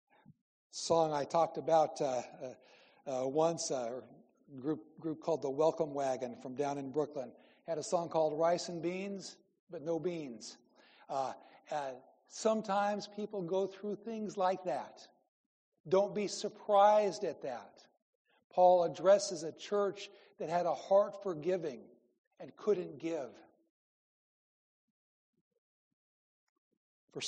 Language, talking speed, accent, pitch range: English, 125 wpm, American, 160-190 Hz